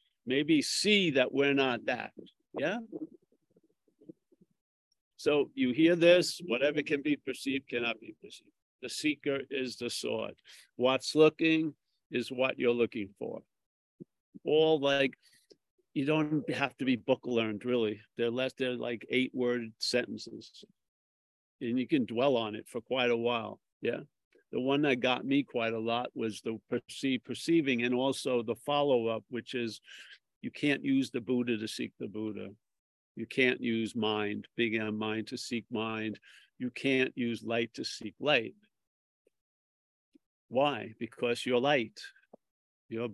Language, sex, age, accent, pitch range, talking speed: English, male, 50-69, American, 115-140 Hz, 150 wpm